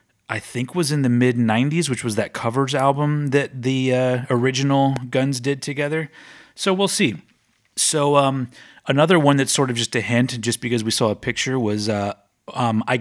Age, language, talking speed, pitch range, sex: 30-49, English, 190 wpm, 110-140 Hz, male